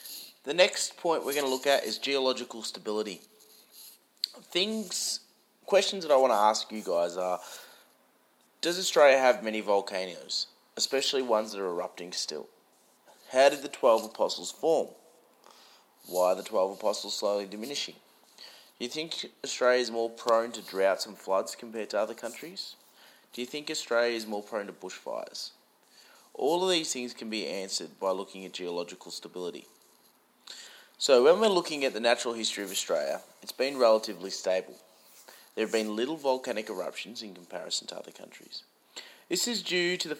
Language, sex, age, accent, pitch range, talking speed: English, male, 30-49, Australian, 100-145 Hz, 165 wpm